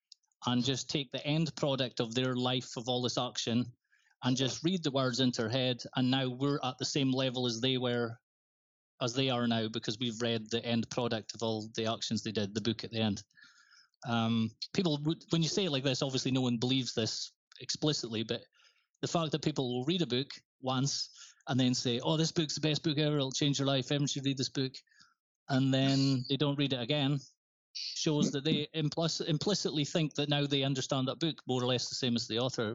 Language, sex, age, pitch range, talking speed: English, male, 30-49, 115-140 Hz, 225 wpm